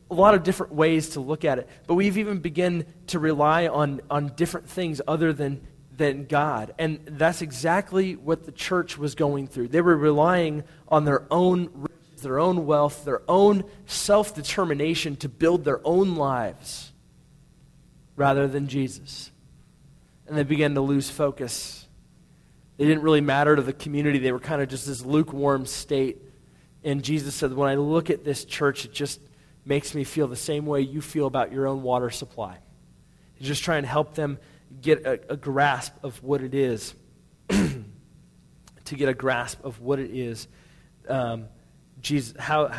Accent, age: American, 30-49